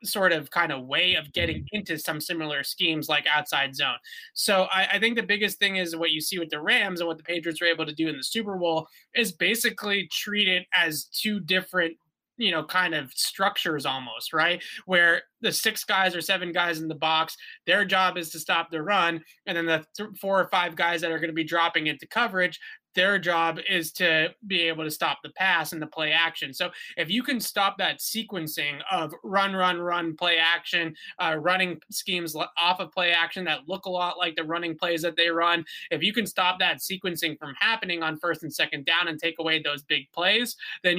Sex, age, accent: male, 20-39, American